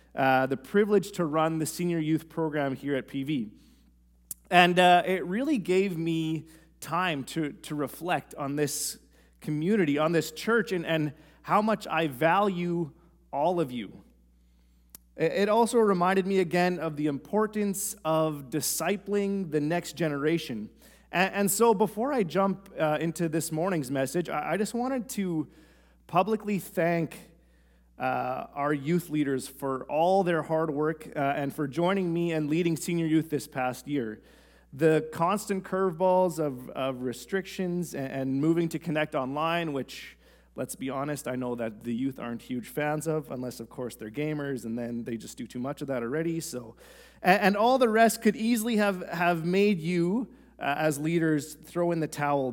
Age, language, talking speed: 30-49, English, 170 wpm